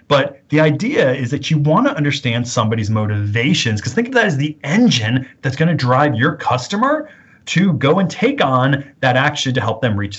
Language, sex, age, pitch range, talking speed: English, male, 30-49, 120-160 Hz, 205 wpm